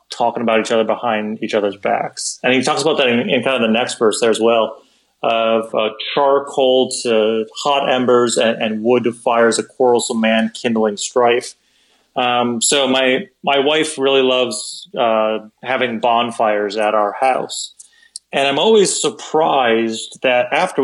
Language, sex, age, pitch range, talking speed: English, male, 30-49, 115-145 Hz, 165 wpm